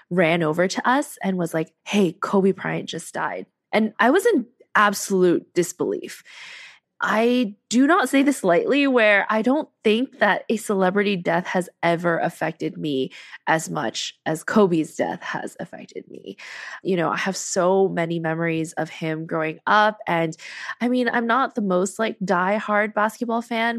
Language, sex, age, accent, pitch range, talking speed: English, female, 20-39, American, 165-210 Hz, 170 wpm